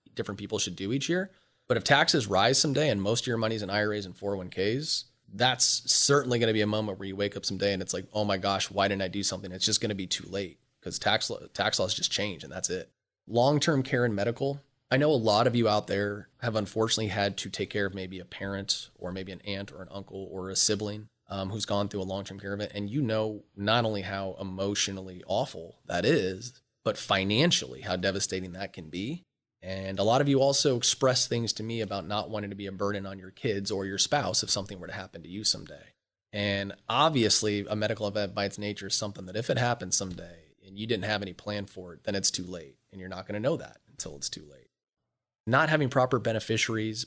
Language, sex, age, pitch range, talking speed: English, male, 30-49, 95-115 Hz, 240 wpm